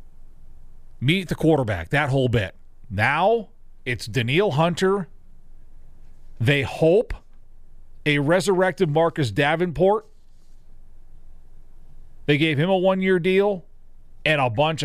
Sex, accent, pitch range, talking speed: male, American, 120-170 Hz, 100 wpm